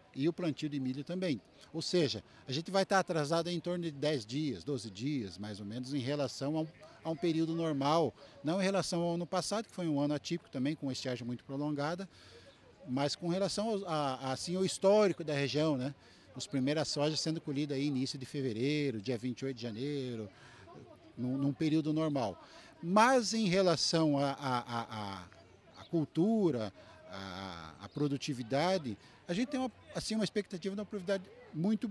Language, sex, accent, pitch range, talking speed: Portuguese, male, Brazilian, 130-175 Hz, 185 wpm